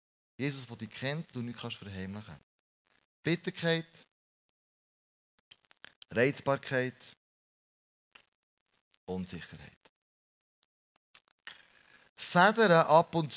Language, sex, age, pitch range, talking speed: German, male, 30-49, 125-165 Hz, 65 wpm